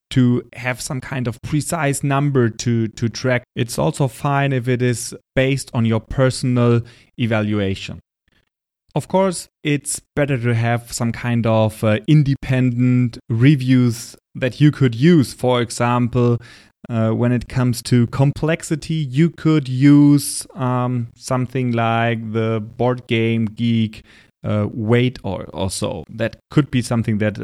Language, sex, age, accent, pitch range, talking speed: English, male, 30-49, German, 115-135 Hz, 140 wpm